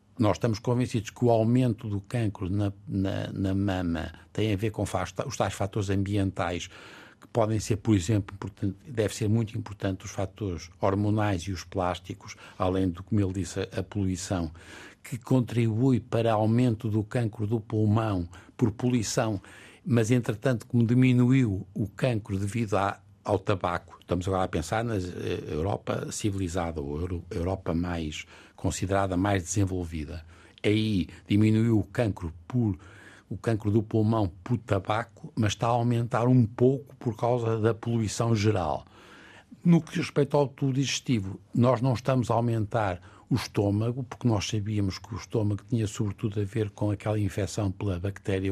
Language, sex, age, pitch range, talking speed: Portuguese, male, 60-79, 95-120 Hz, 160 wpm